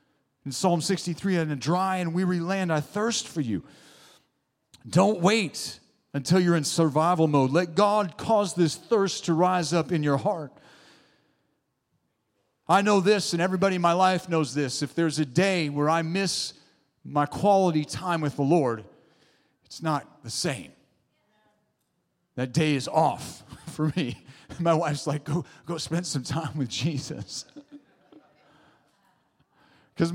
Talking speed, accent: 150 wpm, American